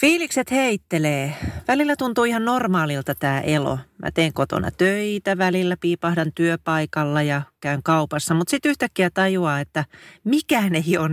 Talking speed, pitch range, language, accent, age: 140 wpm, 145-195 Hz, Finnish, native, 40-59